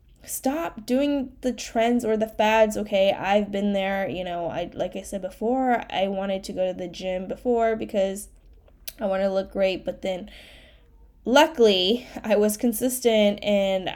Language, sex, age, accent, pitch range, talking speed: English, female, 10-29, American, 185-225 Hz, 170 wpm